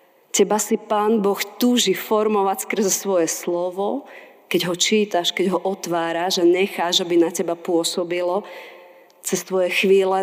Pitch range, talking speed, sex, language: 175-205 Hz, 140 wpm, female, Slovak